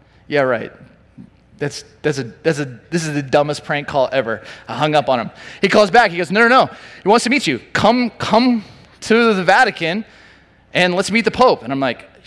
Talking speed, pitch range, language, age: 220 wpm, 155-225 Hz, English, 20-39